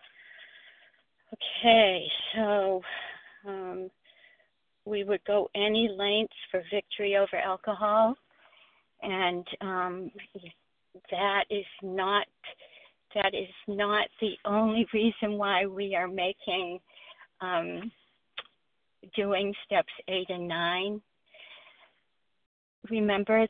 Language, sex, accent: English, female, American